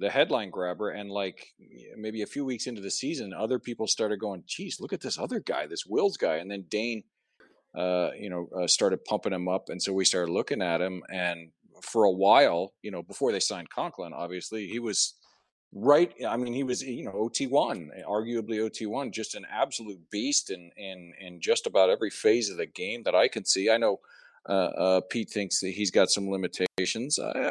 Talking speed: 210 wpm